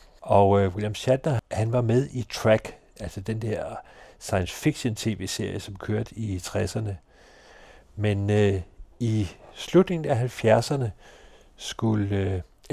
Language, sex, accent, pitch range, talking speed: Danish, male, native, 100-120 Hz, 125 wpm